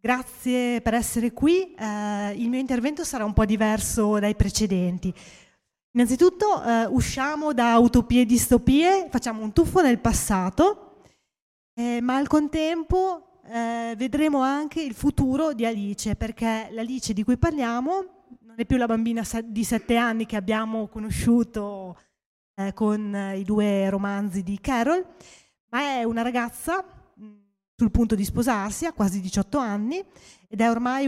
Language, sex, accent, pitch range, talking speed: Italian, female, native, 215-265 Hz, 145 wpm